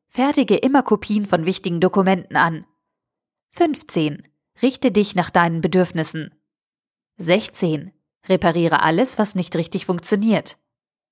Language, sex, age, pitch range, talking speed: German, female, 20-39, 160-205 Hz, 110 wpm